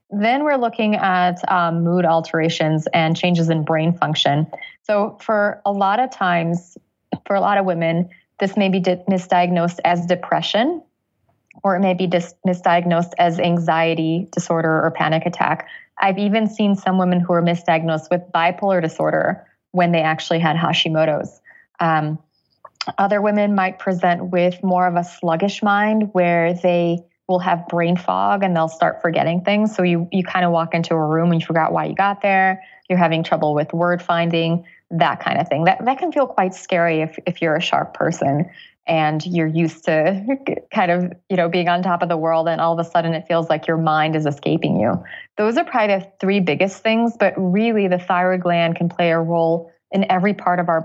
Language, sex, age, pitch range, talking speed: English, female, 20-39, 165-195 Hz, 190 wpm